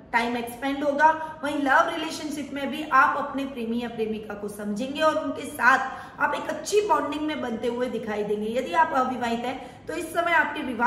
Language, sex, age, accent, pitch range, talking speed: Hindi, female, 20-39, native, 235-295 Hz, 85 wpm